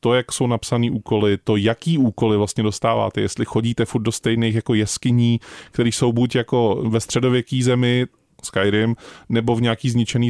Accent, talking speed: native, 170 wpm